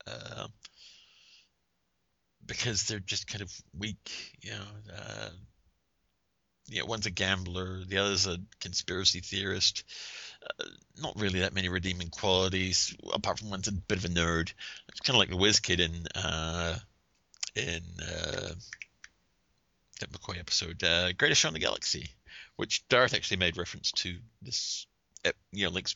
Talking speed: 155 wpm